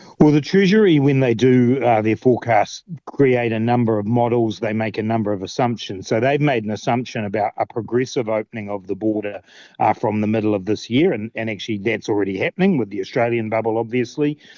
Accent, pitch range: Australian, 105-125 Hz